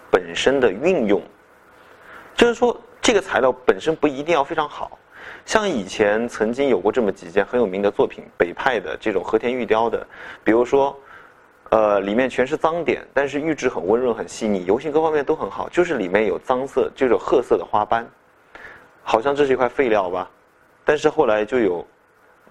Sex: male